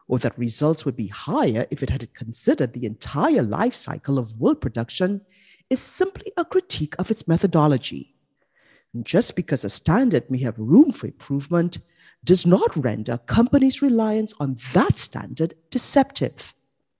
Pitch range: 135-210 Hz